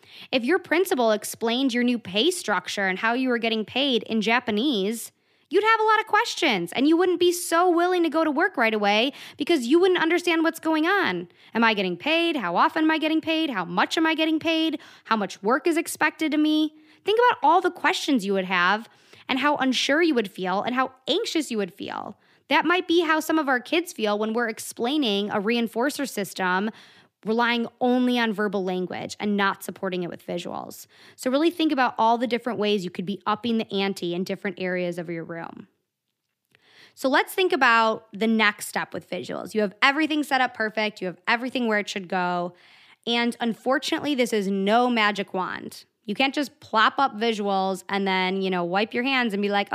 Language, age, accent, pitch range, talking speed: English, 20-39, American, 210-315 Hz, 210 wpm